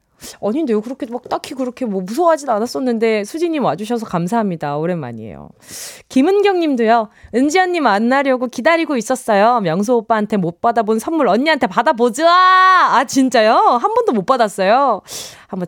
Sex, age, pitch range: female, 20-39, 210-335 Hz